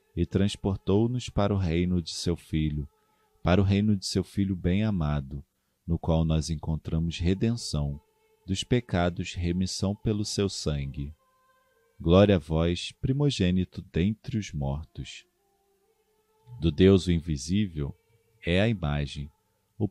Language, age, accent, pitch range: Portuguese, 40-59, Brazilian, 80-115 Hz